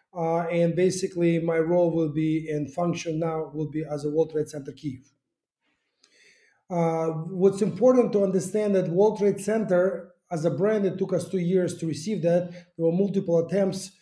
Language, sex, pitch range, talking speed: English, male, 165-200 Hz, 175 wpm